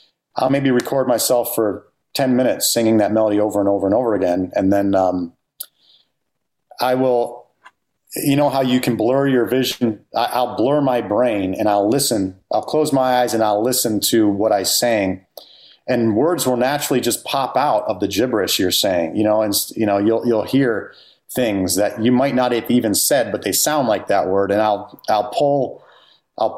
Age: 30-49